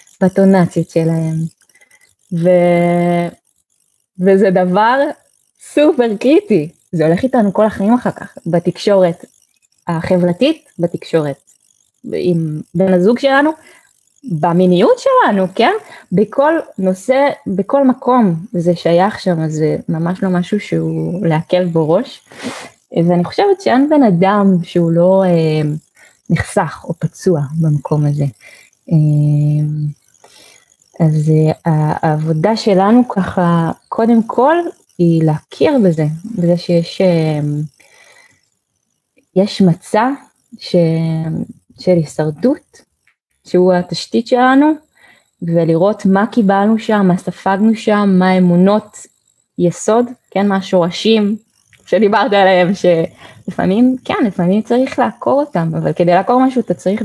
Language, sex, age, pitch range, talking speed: Hebrew, female, 20-39, 165-225 Hz, 105 wpm